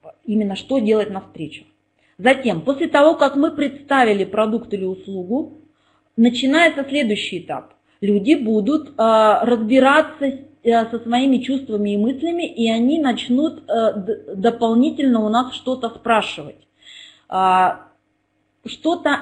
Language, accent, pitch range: Russian, native, 205-265 Hz